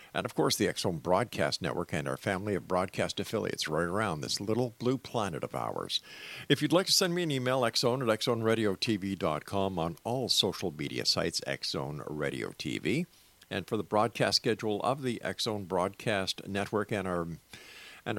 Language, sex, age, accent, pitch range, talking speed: English, male, 50-69, American, 100-130 Hz, 170 wpm